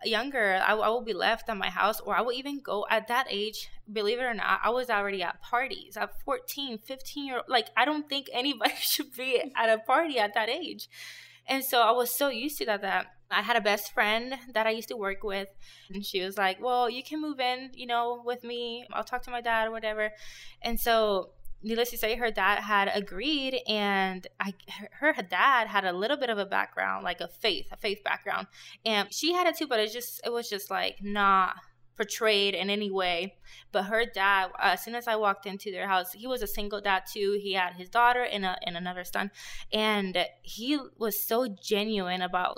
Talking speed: 225 wpm